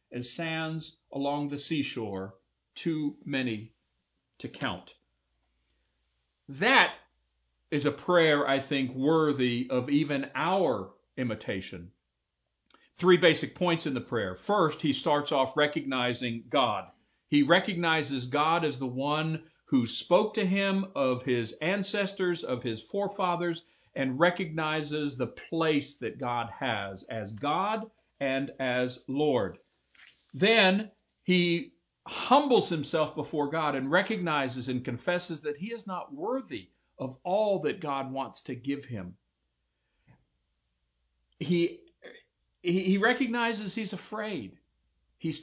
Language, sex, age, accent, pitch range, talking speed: English, male, 50-69, American, 120-180 Hz, 120 wpm